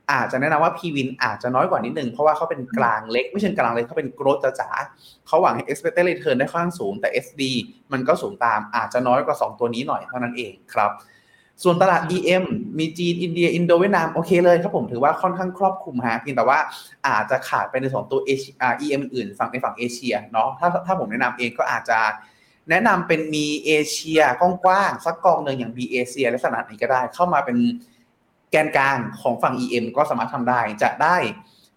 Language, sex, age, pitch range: Thai, male, 20-39, 125-170 Hz